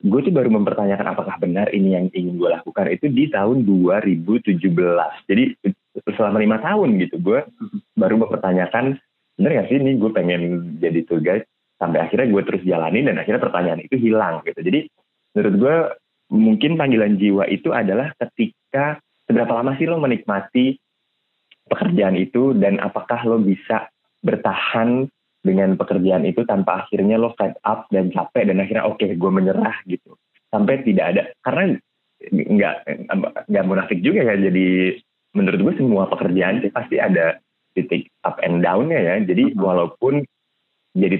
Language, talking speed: Indonesian, 150 wpm